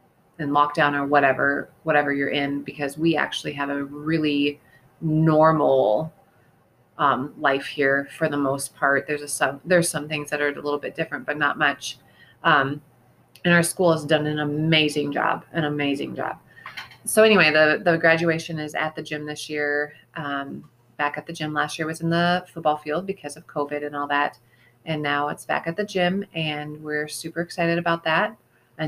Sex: female